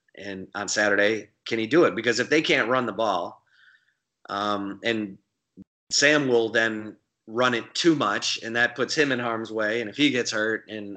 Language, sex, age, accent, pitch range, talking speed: English, male, 30-49, American, 105-120 Hz, 195 wpm